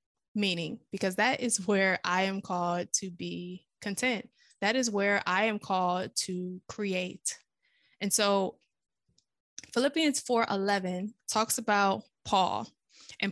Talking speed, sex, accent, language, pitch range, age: 120 wpm, female, American, English, 185-225 Hz, 20-39